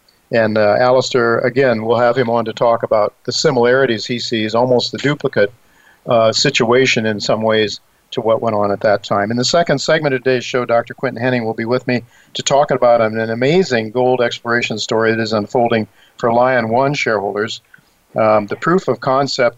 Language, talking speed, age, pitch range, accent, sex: English, 200 wpm, 50-69, 110-125 Hz, American, male